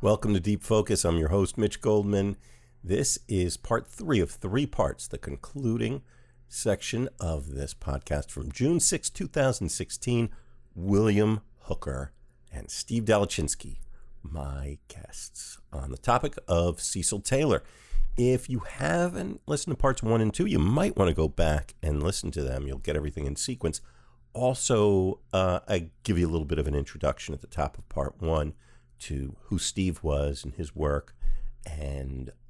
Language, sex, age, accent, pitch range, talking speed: English, male, 50-69, American, 75-115 Hz, 160 wpm